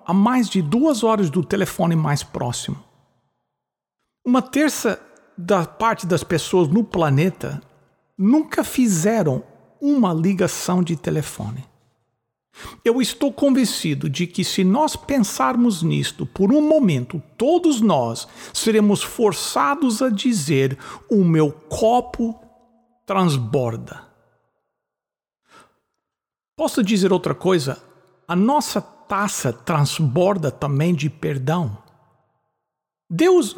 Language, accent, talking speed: English, Brazilian, 100 wpm